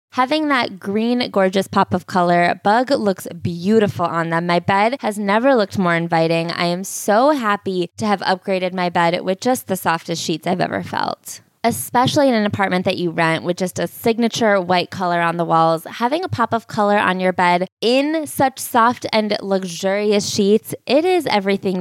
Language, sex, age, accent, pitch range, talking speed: English, female, 20-39, American, 190-245 Hz, 190 wpm